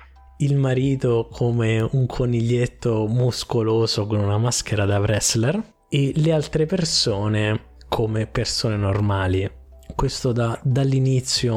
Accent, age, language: native, 20-39, Italian